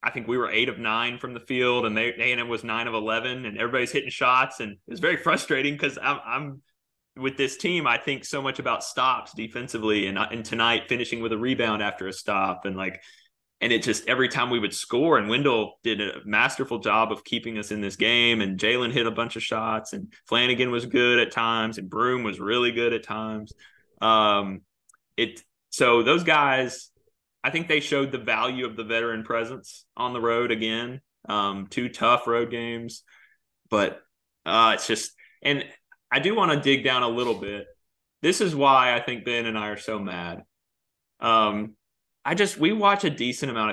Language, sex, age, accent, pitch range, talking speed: English, male, 20-39, American, 110-130 Hz, 205 wpm